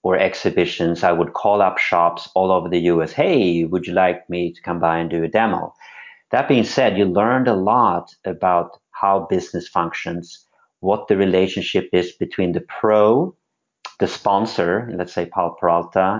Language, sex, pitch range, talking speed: English, male, 85-95 Hz, 175 wpm